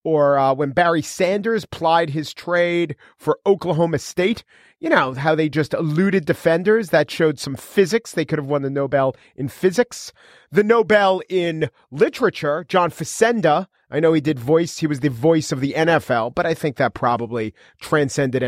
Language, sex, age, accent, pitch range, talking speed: English, male, 40-59, American, 130-175 Hz, 175 wpm